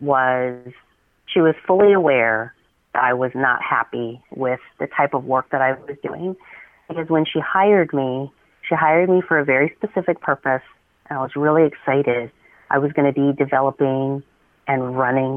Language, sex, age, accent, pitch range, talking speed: English, female, 30-49, American, 130-160 Hz, 175 wpm